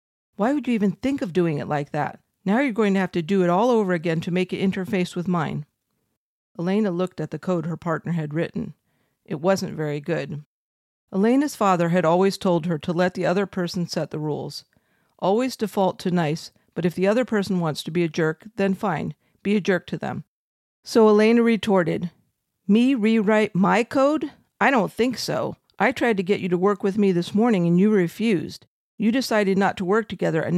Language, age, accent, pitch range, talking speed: English, 50-69, American, 175-210 Hz, 210 wpm